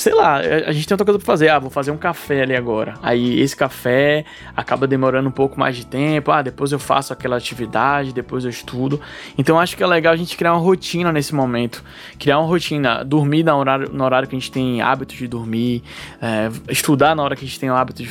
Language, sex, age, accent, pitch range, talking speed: Portuguese, male, 20-39, Brazilian, 130-165 Hz, 235 wpm